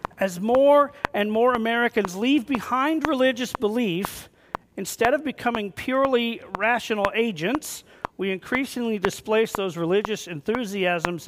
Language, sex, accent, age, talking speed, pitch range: English, male, American, 40-59, 110 wpm, 190-240 Hz